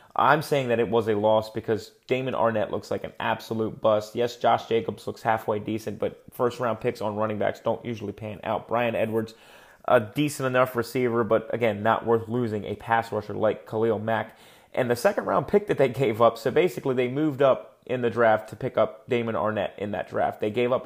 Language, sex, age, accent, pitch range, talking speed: English, male, 30-49, American, 110-125 Hz, 215 wpm